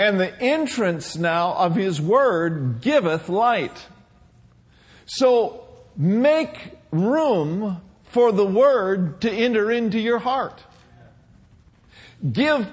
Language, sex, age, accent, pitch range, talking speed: English, male, 50-69, American, 175-240 Hz, 100 wpm